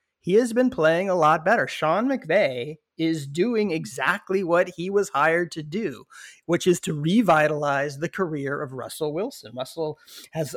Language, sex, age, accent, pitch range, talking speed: English, male, 30-49, American, 140-180 Hz, 165 wpm